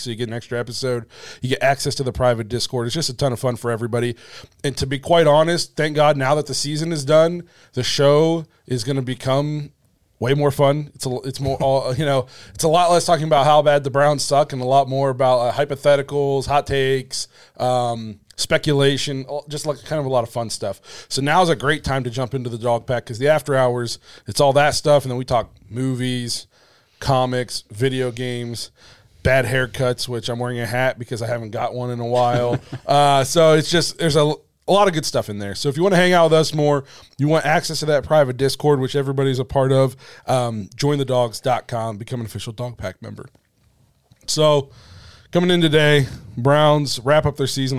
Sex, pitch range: male, 120-145 Hz